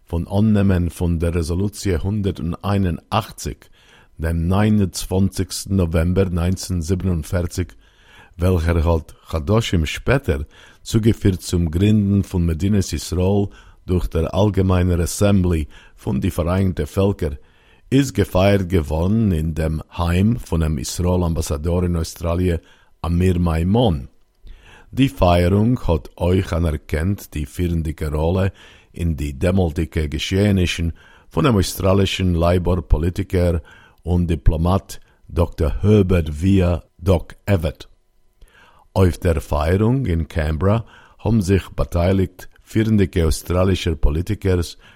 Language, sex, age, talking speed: Hebrew, male, 50-69, 100 wpm